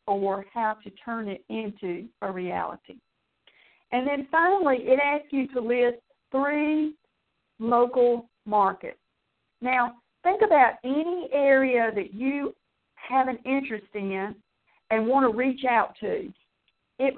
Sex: female